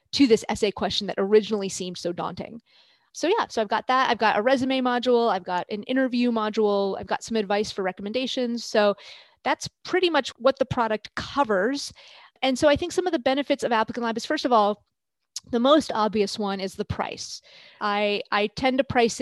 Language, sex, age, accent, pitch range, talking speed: English, female, 30-49, American, 200-260 Hz, 205 wpm